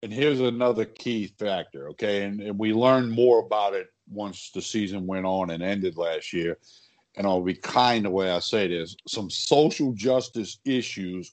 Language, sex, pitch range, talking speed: English, male, 100-125 Hz, 185 wpm